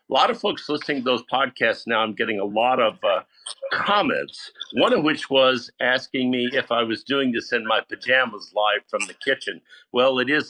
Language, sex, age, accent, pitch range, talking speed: English, male, 50-69, American, 120-165 Hz, 210 wpm